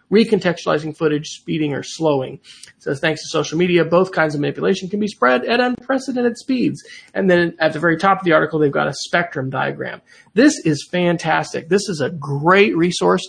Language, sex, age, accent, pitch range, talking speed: English, male, 30-49, American, 145-180 Hz, 195 wpm